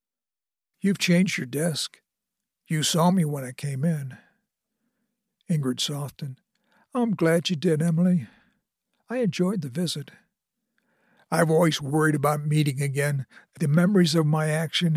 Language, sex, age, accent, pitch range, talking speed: English, male, 60-79, American, 150-200 Hz, 130 wpm